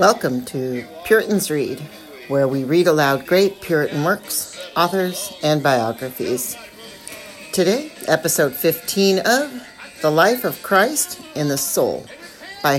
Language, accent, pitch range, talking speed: English, American, 135-180 Hz, 120 wpm